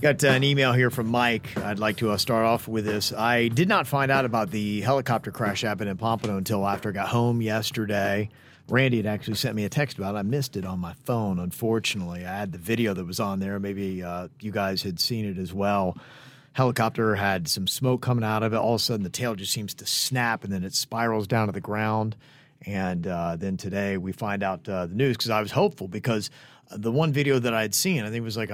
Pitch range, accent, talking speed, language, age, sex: 95-125 Hz, American, 250 wpm, English, 40-59, male